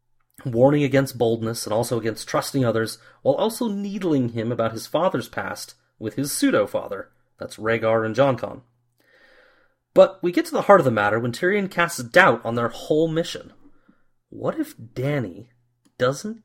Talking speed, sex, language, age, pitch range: 160 wpm, male, English, 30-49, 120-190 Hz